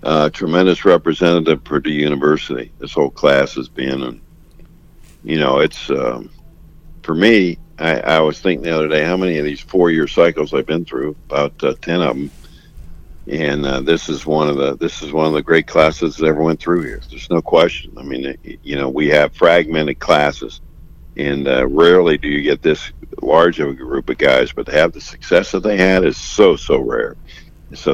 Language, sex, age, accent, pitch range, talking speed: English, male, 60-79, American, 70-80 Hz, 205 wpm